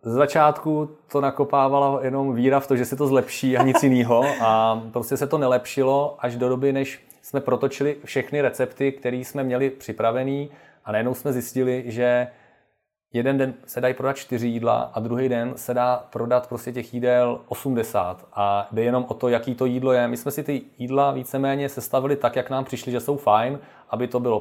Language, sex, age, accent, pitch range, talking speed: Czech, male, 30-49, native, 115-130 Hz, 195 wpm